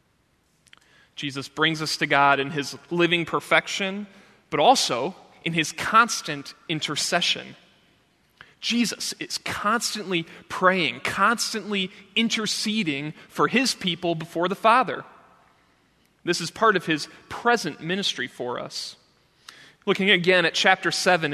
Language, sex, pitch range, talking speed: English, male, 150-195 Hz, 115 wpm